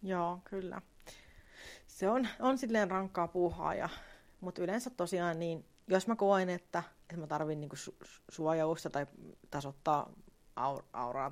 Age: 30-49